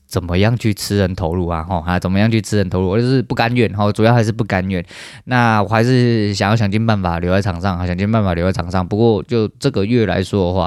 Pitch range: 95-110 Hz